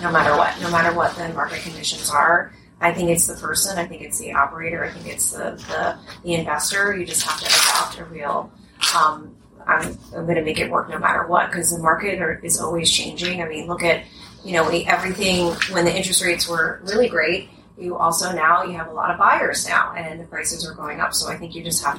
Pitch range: 165-180 Hz